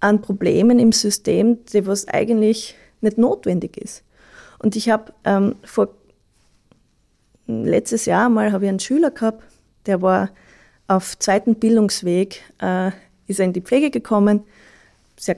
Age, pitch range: 20-39, 200-235 Hz